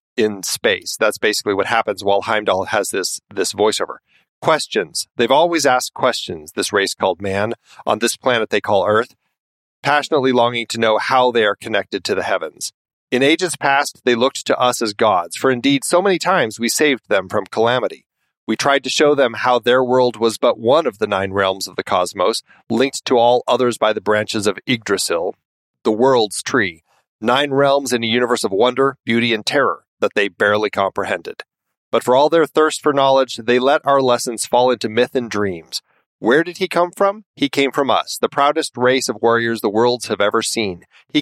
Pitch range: 115-140 Hz